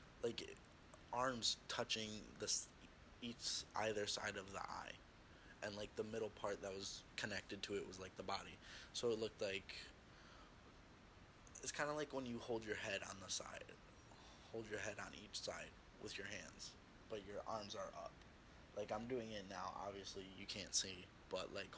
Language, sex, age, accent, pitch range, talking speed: English, male, 20-39, American, 95-110 Hz, 175 wpm